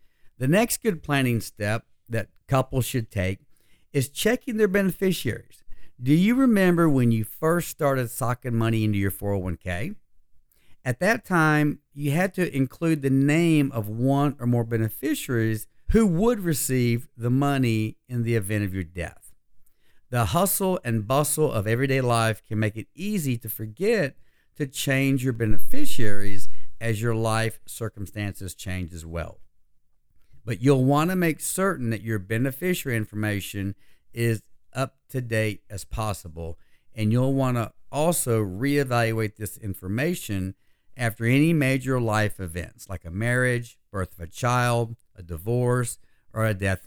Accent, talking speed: American, 145 wpm